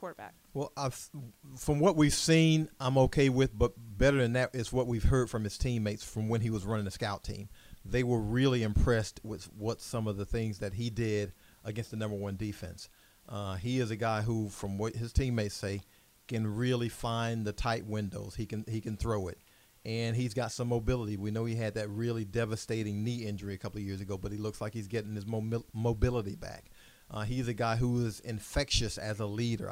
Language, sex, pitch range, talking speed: English, male, 105-125 Hz, 210 wpm